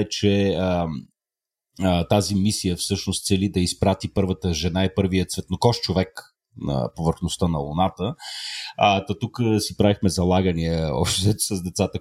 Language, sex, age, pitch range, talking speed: Bulgarian, male, 30-49, 90-105 Hz, 130 wpm